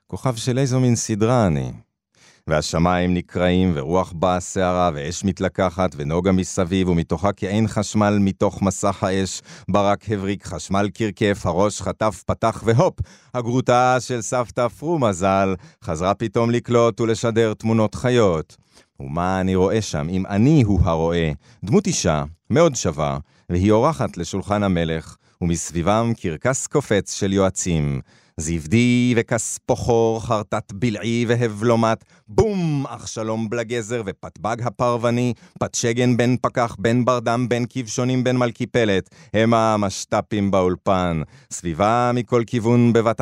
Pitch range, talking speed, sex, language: 95-120 Hz, 120 wpm, male, Hebrew